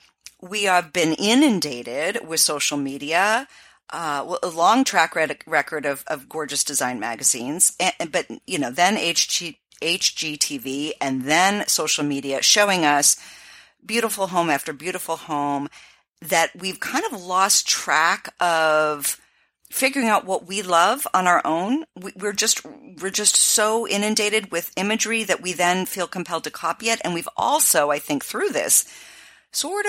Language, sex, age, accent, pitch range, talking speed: English, female, 40-59, American, 155-210 Hz, 150 wpm